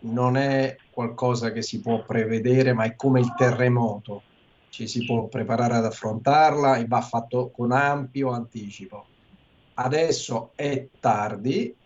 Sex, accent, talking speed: male, native, 135 wpm